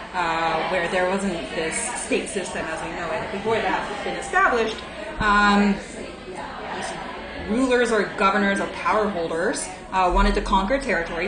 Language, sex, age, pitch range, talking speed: English, female, 20-39, 175-220 Hz, 150 wpm